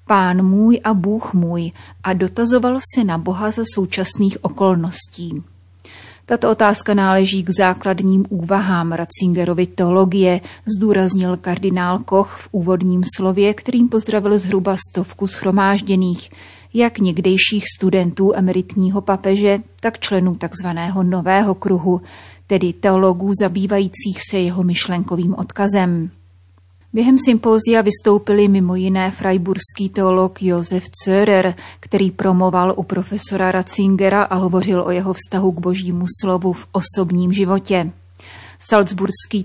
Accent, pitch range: native, 180-200 Hz